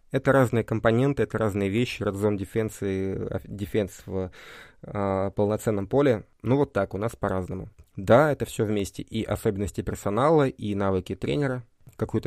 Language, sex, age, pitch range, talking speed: Russian, male, 20-39, 100-115 Hz, 140 wpm